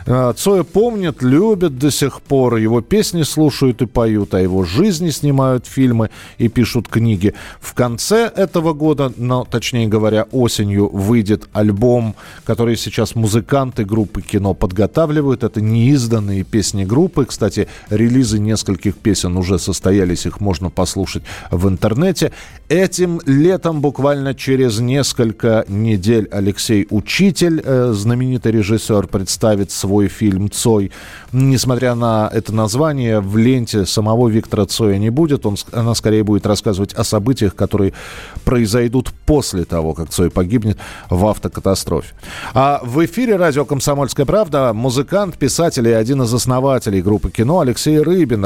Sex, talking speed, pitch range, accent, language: male, 130 wpm, 105-140 Hz, native, Russian